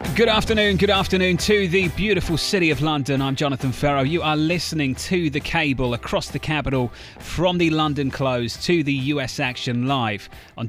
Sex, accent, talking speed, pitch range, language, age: male, British, 180 wpm, 120-160 Hz, English, 30-49